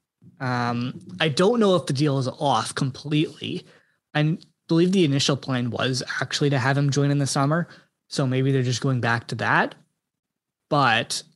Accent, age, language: American, 20-39, English